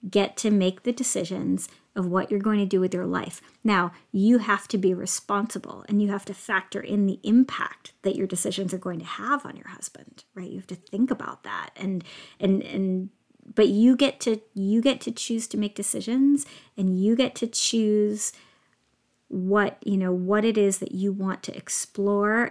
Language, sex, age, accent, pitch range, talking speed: English, female, 40-59, American, 190-230 Hz, 200 wpm